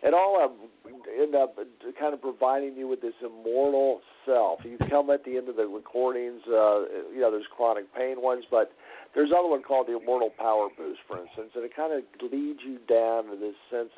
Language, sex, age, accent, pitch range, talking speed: English, male, 50-69, American, 115-135 Hz, 215 wpm